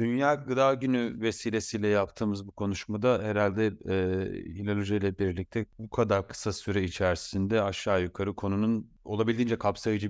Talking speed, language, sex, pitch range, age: 135 wpm, Turkish, male, 100-110 Hz, 30-49